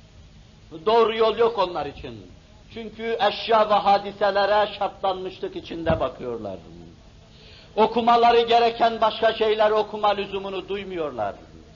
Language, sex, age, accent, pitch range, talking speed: Turkish, male, 60-79, native, 205-235 Hz, 95 wpm